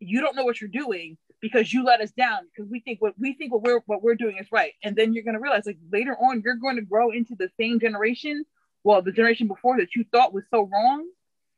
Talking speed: 265 wpm